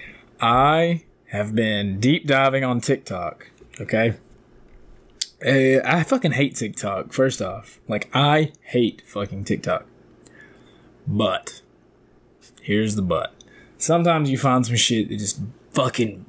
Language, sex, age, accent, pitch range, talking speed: English, male, 20-39, American, 115-150 Hz, 115 wpm